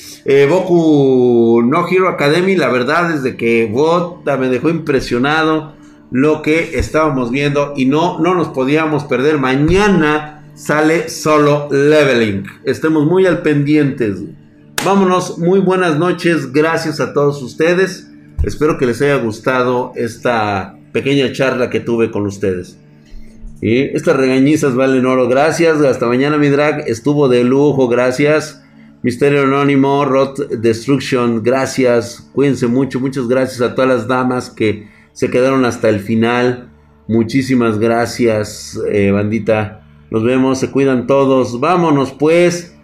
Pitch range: 120-150 Hz